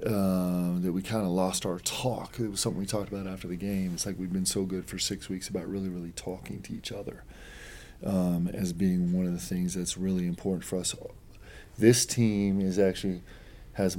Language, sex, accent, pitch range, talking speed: English, male, American, 90-95 Hz, 215 wpm